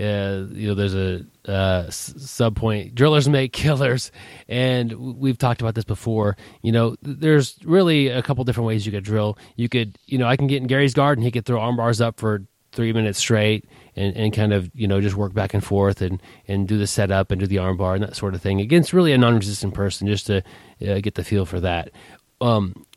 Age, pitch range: 30-49, 100-125 Hz